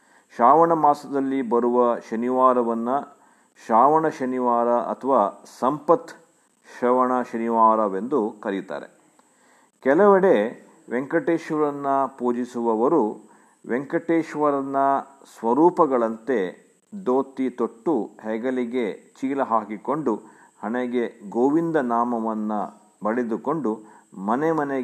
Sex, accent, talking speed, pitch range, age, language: male, Indian, 60 wpm, 115-155 Hz, 50-69, English